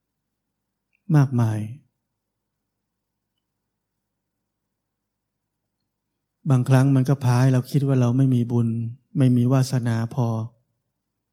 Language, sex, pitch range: Thai, male, 105-130 Hz